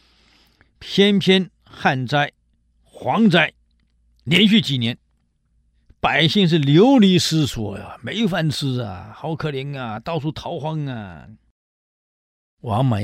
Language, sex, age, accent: Chinese, male, 50-69, native